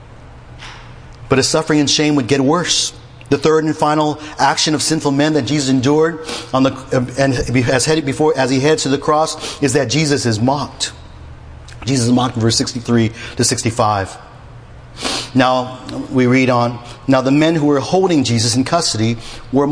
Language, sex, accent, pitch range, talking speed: English, male, American, 120-150 Hz, 175 wpm